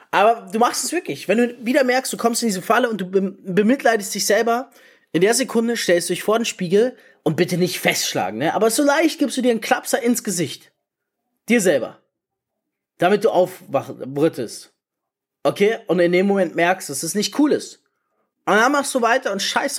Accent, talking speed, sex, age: German, 205 wpm, male, 20-39